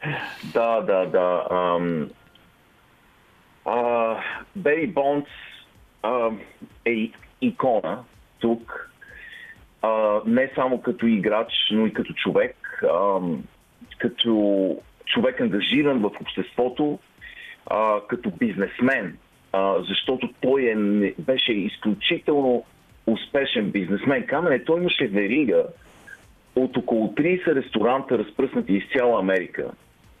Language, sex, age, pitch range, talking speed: Bulgarian, male, 40-59, 100-135 Hz, 95 wpm